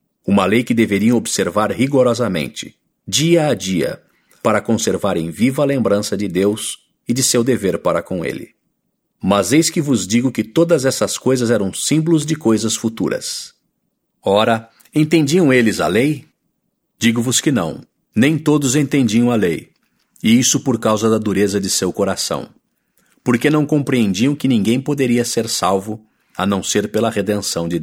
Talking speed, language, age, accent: 155 wpm, English, 50-69, Brazilian